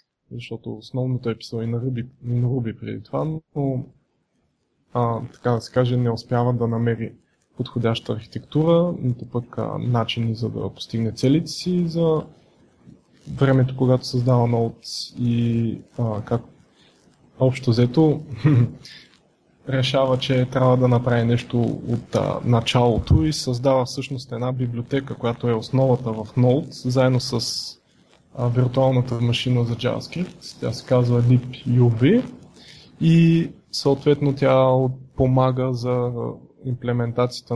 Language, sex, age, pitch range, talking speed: Bulgarian, male, 20-39, 115-130 Hz, 120 wpm